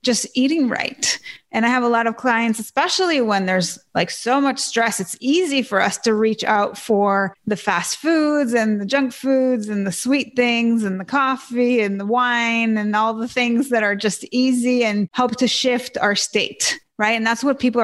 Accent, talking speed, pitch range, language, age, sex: American, 205 wpm, 210-255 Hz, English, 30-49, female